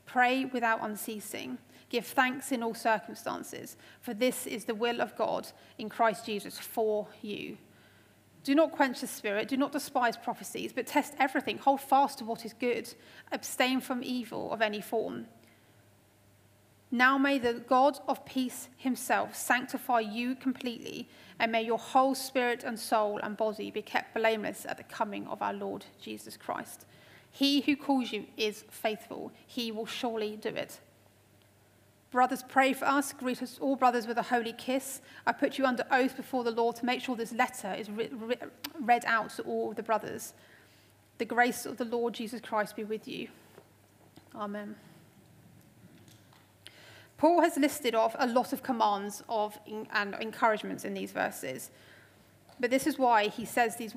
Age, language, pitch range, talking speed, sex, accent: 30-49, English, 215-255 Hz, 170 wpm, female, British